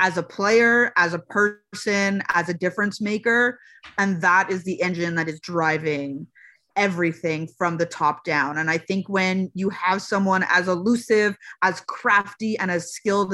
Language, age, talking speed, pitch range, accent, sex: English, 20-39, 165 wpm, 175-220 Hz, American, female